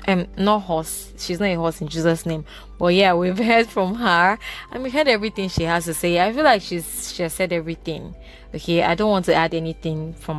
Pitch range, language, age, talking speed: 170-220 Hz, English, 20-39, 235 wpm